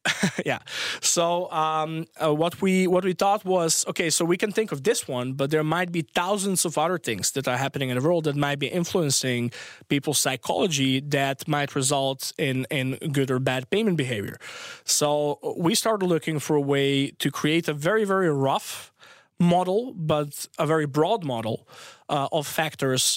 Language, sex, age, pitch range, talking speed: English, male, 20-39, 135-165 Hz, 180 wpm